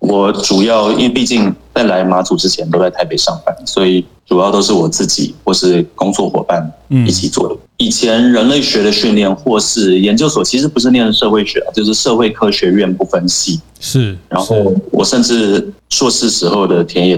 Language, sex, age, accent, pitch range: Chinese, male, 30-49, native, 90-115 Hz